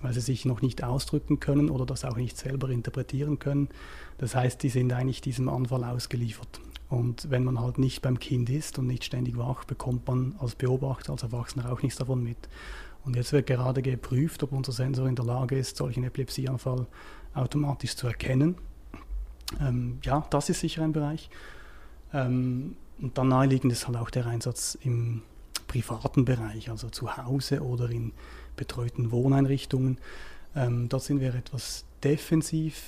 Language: German